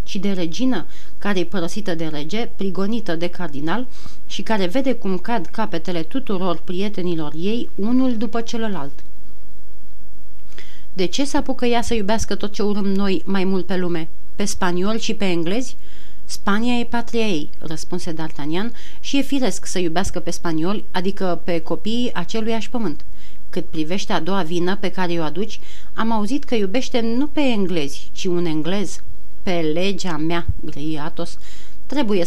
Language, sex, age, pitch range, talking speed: Romanian, female, 30-49, 170-225 Hz, 160 wpm